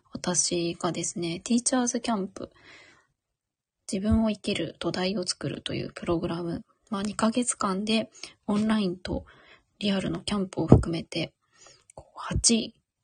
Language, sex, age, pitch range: Japanese, female, 20-39, 190-235 Hz